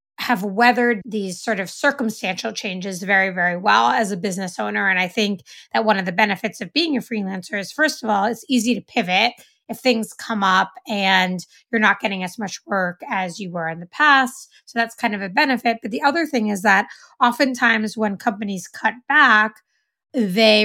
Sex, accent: female, American